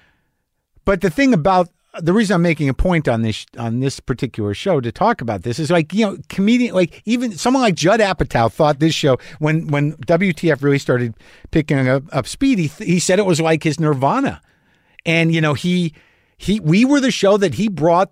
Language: English